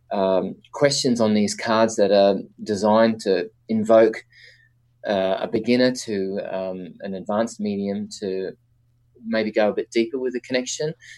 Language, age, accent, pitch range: English, 20-39, Australian, 100-120 Hz